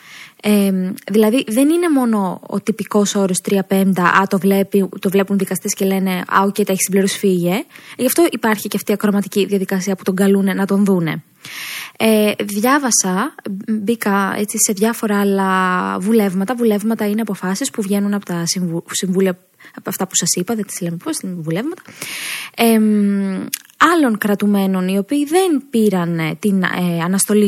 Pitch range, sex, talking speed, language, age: 195-250 Hz, female, 155 wpm, Greek, 20-39